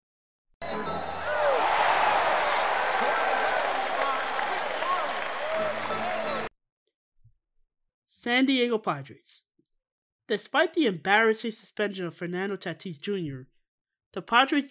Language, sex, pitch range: English, male, 180-255 Hz